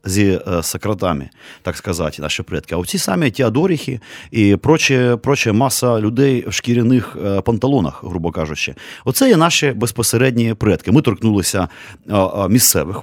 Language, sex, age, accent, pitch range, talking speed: Ukrainian, male, 30-49, native, 95-125 Hz, 125 wpm